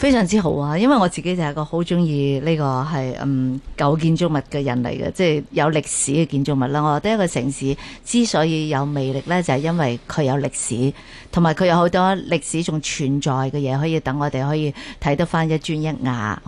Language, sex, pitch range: Chinese, female, 140-180 Hz